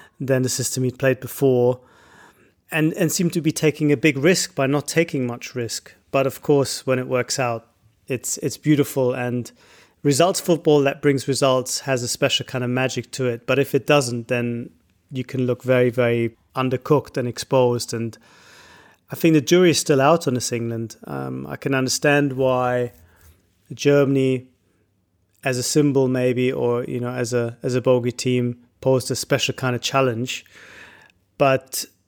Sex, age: male, 30-49